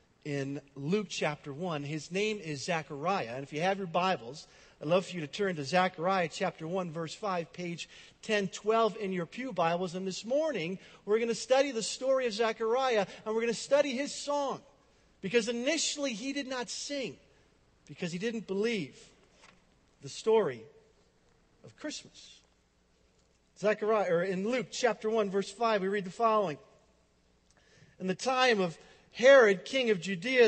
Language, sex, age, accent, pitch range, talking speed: English, male, 50-69, American, 170-225 Hz, 165 wpm